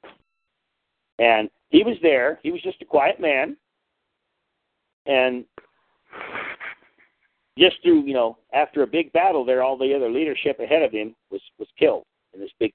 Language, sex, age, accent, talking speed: English, male, 50-69, American, 155 wpm